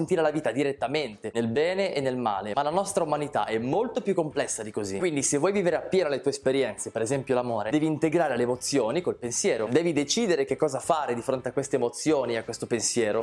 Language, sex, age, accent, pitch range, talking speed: Italian, male, 20-39, native, 125-160 Hz, 225 wpm